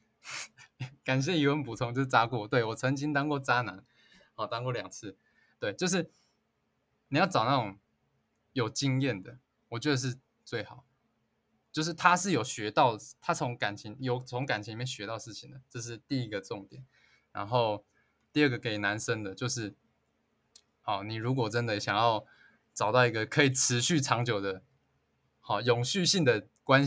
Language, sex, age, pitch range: Chinese, male, 20-39, 110-140 Hz